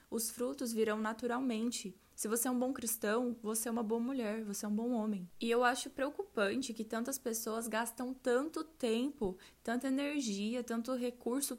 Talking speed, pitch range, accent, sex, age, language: 175 wpm, 220-260 Hz, Brazilian, female, 10-29, Portuguese